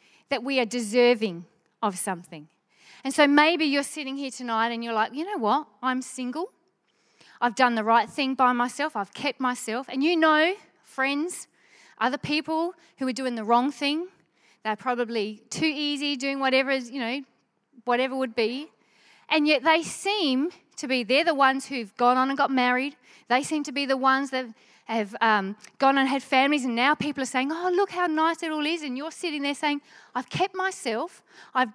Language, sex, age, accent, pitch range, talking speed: English, female, 30-49, Australian, 235-295 Hz, 195 wpm